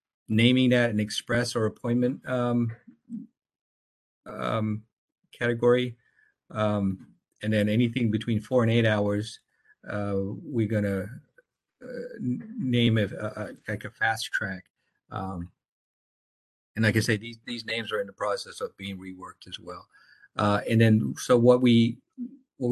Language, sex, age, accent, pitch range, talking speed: English, male, 50-69, American, 105-125 Hz, 145 wpm